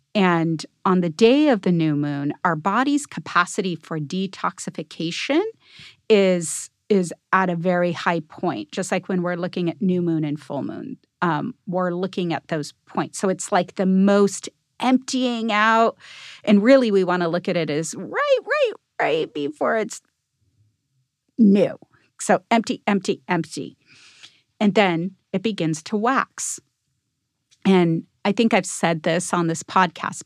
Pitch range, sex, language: 170-205 Hz, female, English